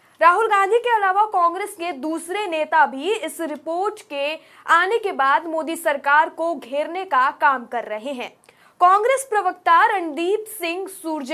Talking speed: 145 wpm